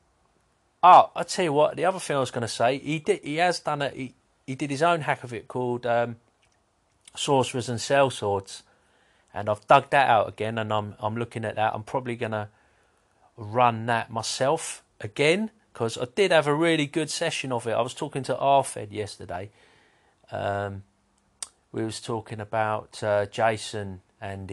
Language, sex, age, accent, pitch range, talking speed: English, male, 40-59, British, 105-135 Hz, 190 wpm